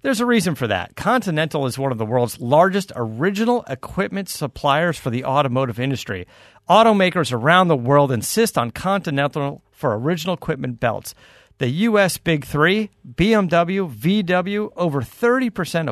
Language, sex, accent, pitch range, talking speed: English, male, American, 125-170 Hz, 145 wpm